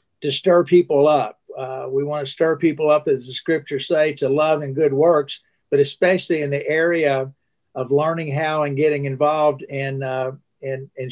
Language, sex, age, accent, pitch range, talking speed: English, male, 50-69, American, 135-170 Hz, 180 wpm